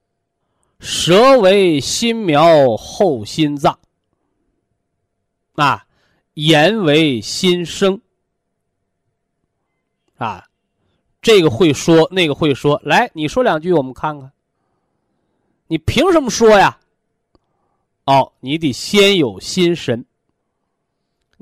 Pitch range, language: 130-185 Hz, Chinese